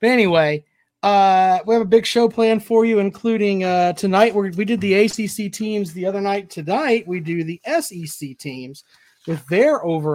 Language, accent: English, American